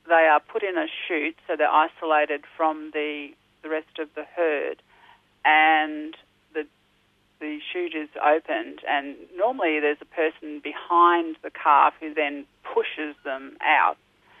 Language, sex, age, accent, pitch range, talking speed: English, female, 40-59, Australian, 150-180 Hz, 145 wpm